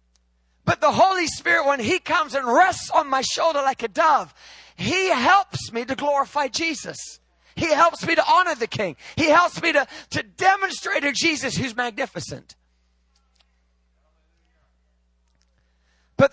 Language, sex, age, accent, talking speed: English, male, 30-49, American, 145 wpm